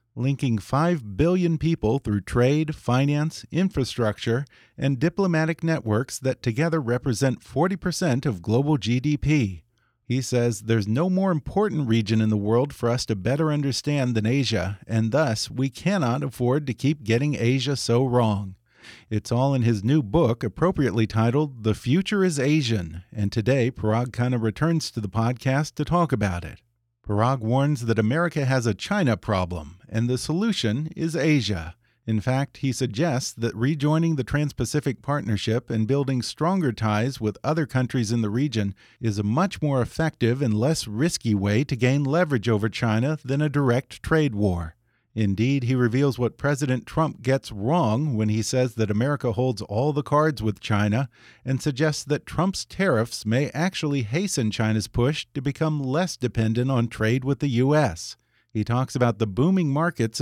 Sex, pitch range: male, 115-150 Hz